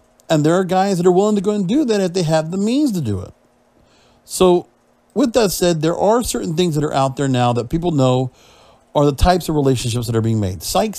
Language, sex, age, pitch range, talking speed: English, male, 50-69, 135-195 Hz, 250 wpm